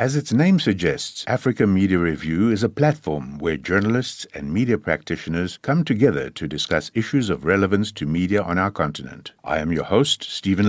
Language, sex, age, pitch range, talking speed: English, male, 60-79, 85-120 Hz, 180 wpm